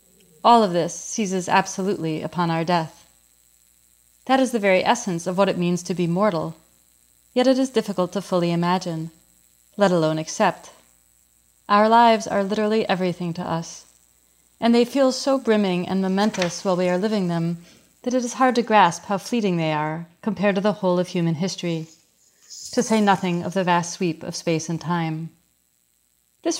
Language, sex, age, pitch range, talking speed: English, female, 30-49, 165-205 Hz, 175 wpm